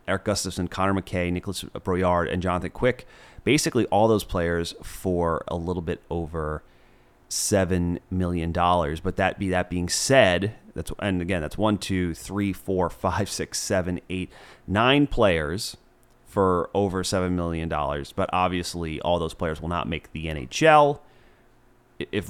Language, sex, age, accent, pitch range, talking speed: English, male, 30-49, American, 80-95 Hz, 155 wpm